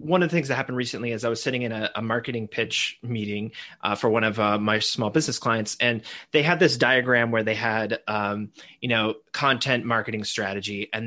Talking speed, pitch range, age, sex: 220 wpm, 115-155 Hz, 30-49, male